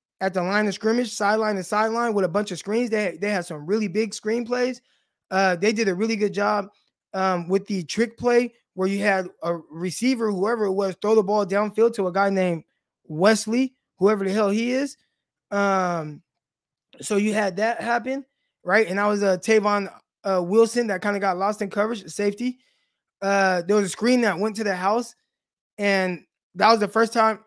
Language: English